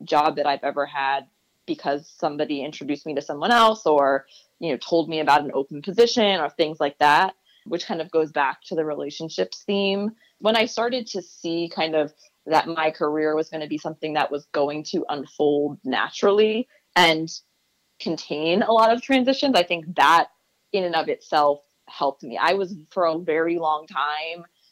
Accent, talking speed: American, 185 wpm